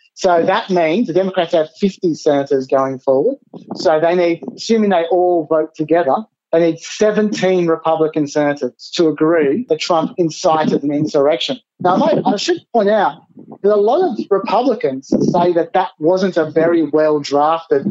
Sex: male